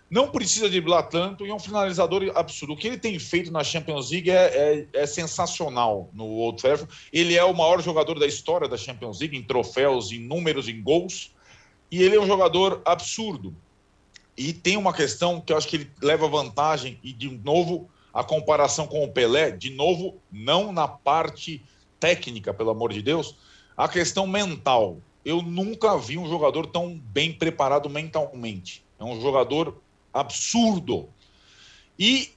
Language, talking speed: Portuguese, 170 wpm